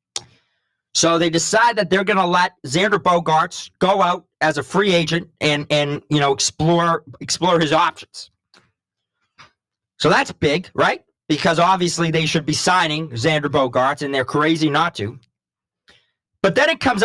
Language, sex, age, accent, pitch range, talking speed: English, male, 40-59, American, 145-190 Hz, 160 wpm